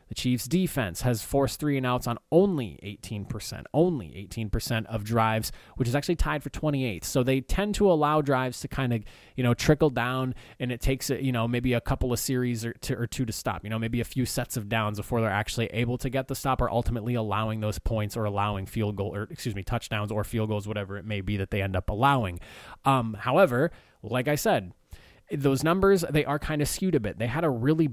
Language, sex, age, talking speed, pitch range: English, male, 20-39, 230 wpm, 110-145 Hz